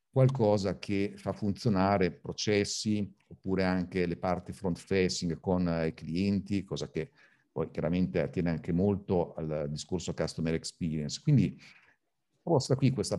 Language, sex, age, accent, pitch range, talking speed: Italian, male, 50-69, native, 90-105 Hz, 130 wpm